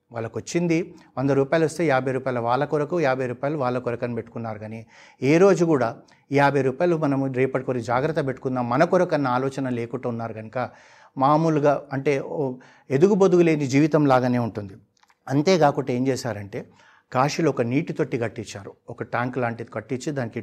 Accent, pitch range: native, 120-145 Hz